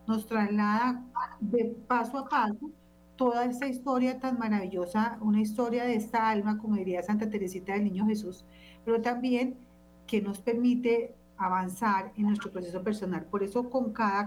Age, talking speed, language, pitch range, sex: 40-59, 155 wpm, Spanish, 195-230 Hz, female